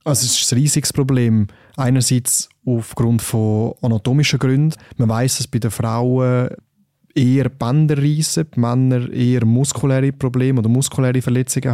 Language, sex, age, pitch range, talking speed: German, male, 20-39, 115-130 Hz, 140 wpm